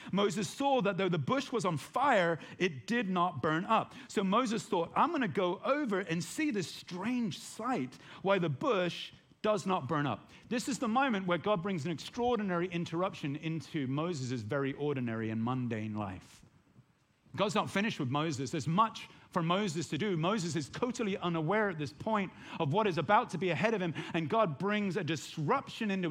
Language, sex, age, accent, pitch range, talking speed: English, male, 40-59, British, 150-215 Hz, 195 wpm